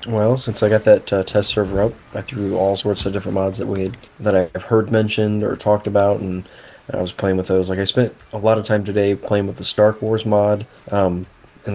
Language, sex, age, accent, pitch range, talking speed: English, male, 20-39, American, 100-115 Hz, 245 wpm